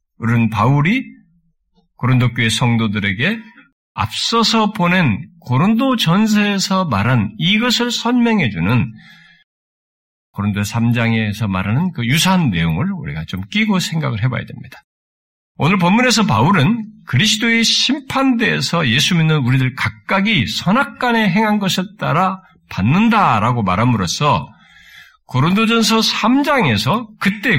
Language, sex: Korean, male